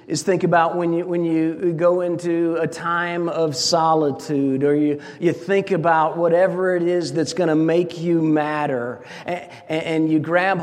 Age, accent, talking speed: 50-69, American, 175 wpm